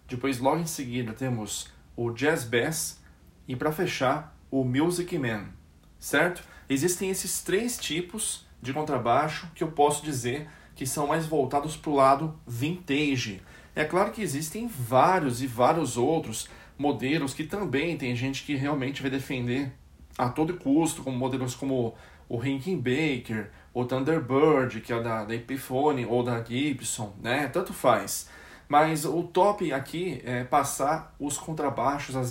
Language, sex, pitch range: Portuguese, male, 125-155 Hz